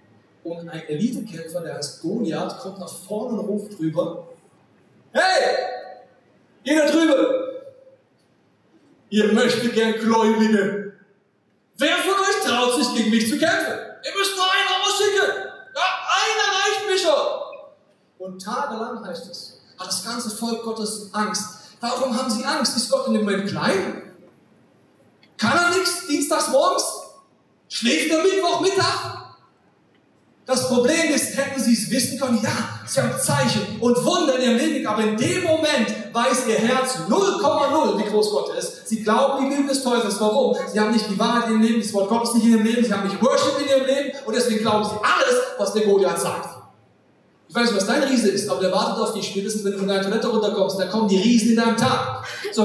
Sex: male